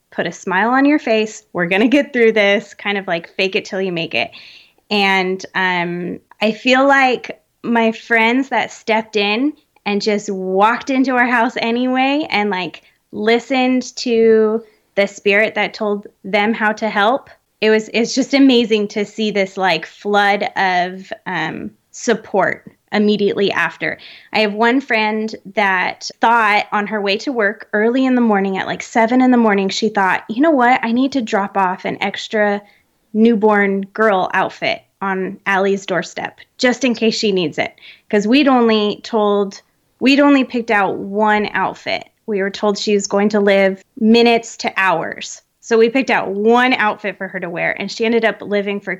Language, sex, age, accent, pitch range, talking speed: English, female, 20-39, American, 200-235 Hz, 180 wpm